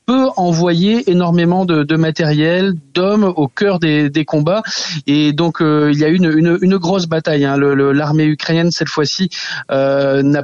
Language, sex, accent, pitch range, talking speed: French, male, French, 145-175 Hz, 190 wpm